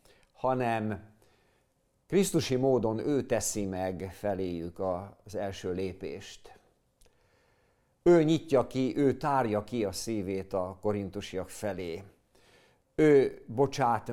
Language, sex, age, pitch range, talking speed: Hungarian, male, 50-69, 100-140 Hz, 100 wpm